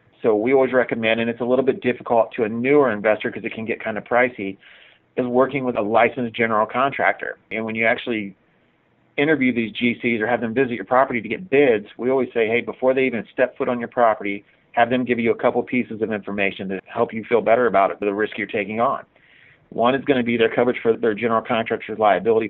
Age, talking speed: 40-59, 235 wpm